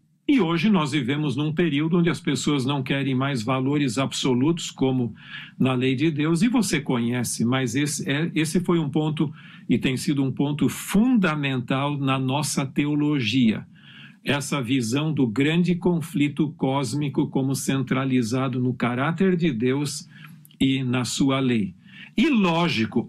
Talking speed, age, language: 145 wpm, 50-69, Portuguese